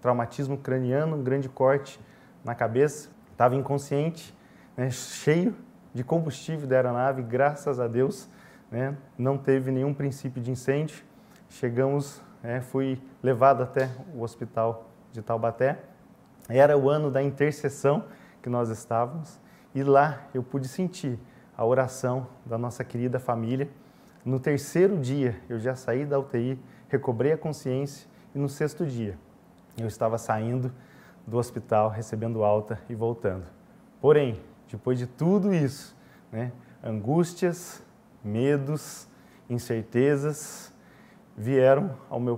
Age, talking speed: 20-39, 125 wpm